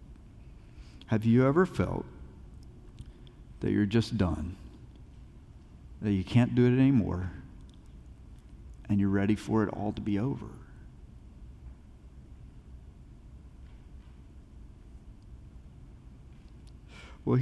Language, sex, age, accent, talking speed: English, male, 50-69, American, 85 wpm